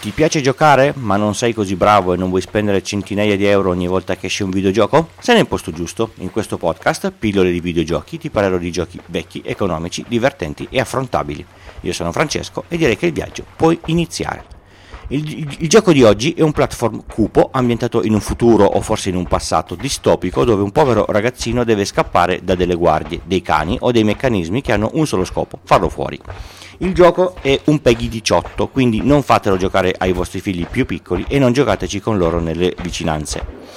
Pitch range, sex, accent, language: 90-125 Hz, male, native, Italian